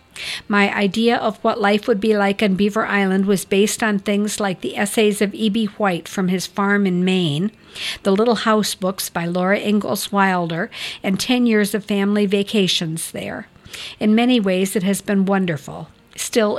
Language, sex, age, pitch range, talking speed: English, female, 50-69, 190-220 Hz, 175 wpm